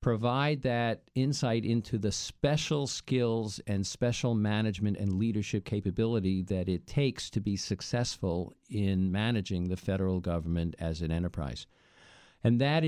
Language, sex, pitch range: English, male, 105-135 Hz